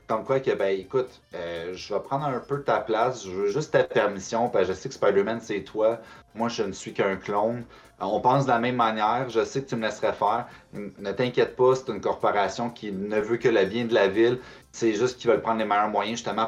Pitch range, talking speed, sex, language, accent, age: 110-150 Hz, 255 wpm, male, French, Canadian, 30-49